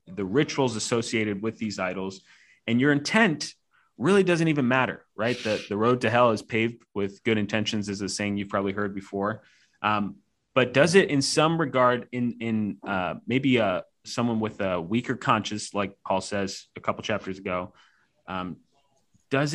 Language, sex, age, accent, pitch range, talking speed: English, male, 30-49, American, 105-130 Hz, 175 wpm